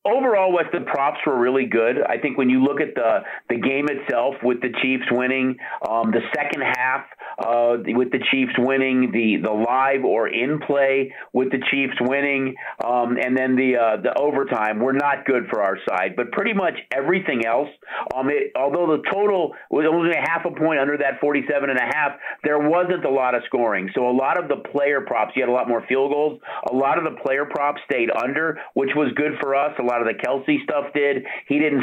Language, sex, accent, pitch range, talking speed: English, male, American, 125-145 Hz, 220 wpm